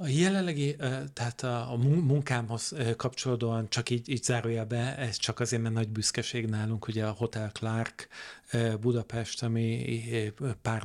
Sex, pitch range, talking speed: male, 105-120 Hz, 140 wpm